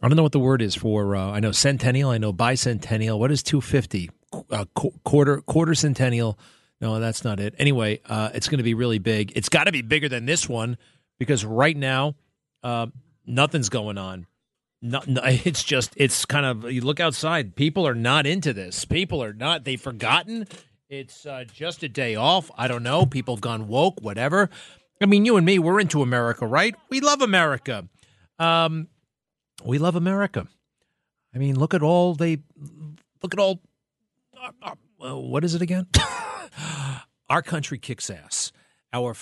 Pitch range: 115-150 Hz